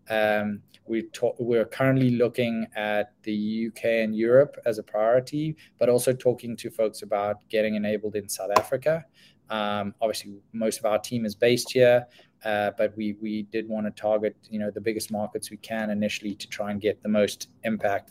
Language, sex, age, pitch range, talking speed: English, male, 20-39, 105-125 Hz, 190 wpm